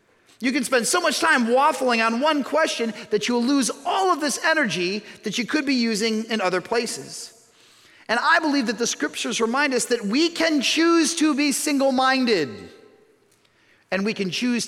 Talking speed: 180 wpm